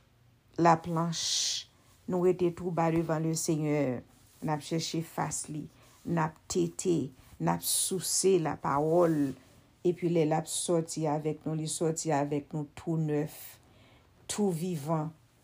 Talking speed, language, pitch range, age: 130 wpm, English, 130-180 Hz, 60-79